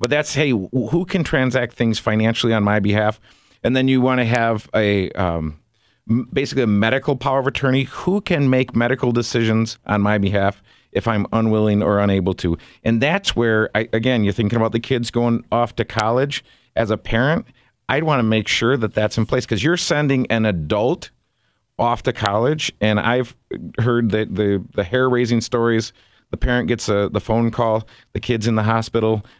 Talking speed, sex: 190 wpm, male